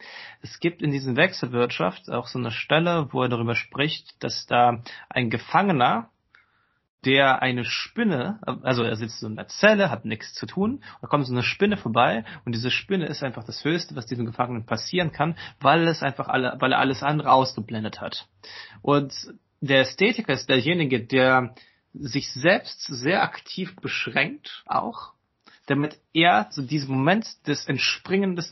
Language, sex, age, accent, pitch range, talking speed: German, male, 30-49, German, 125-155 Hz, 165 wpm